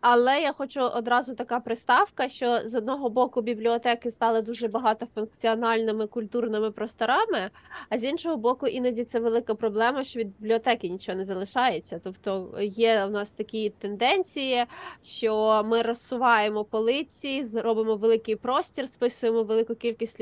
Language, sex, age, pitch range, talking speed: Ukrainian, female, 20-39, 220-255 Hz, 135 wpm